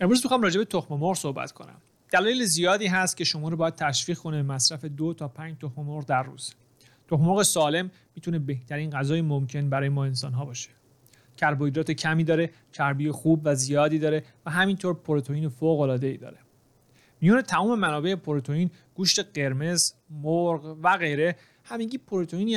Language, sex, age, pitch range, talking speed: Persian, male, 30-49, 140-175 Hz, 155 wpm